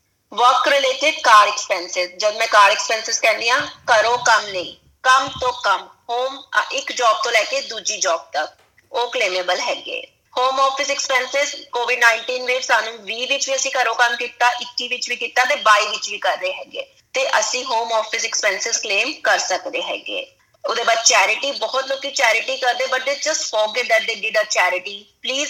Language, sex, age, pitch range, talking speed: Punjabi, female, 20-39, 220-285 Hz, 190 wpm